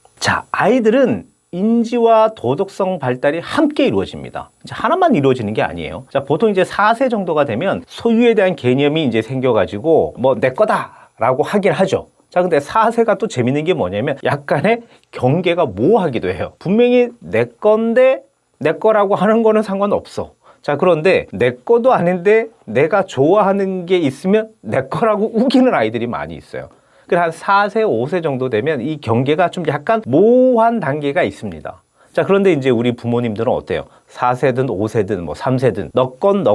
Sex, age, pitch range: male, 40-59, 135-215 Hz